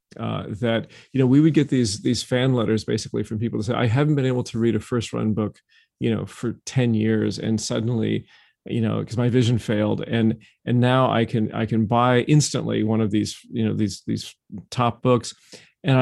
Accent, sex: American, male